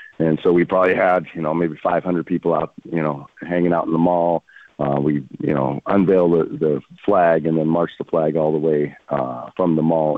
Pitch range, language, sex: 75-90 Hz, English, male